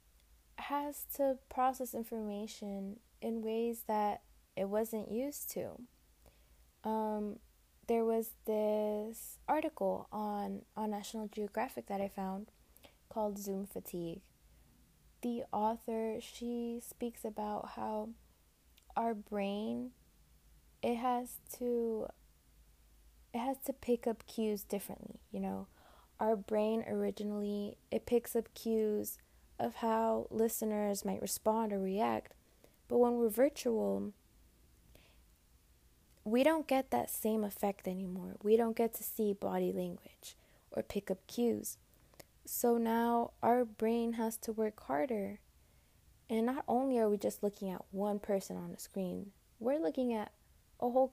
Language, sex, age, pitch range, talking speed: English, female, 20-39, 195-235 Hz, 125 wpm